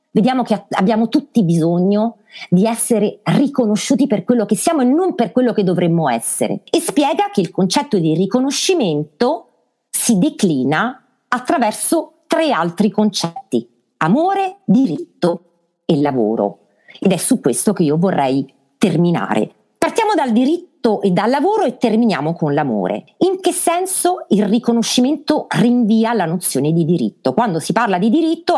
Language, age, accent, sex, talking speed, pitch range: Italian, 50-69, native, female, 145 wpm, 175-265 Hz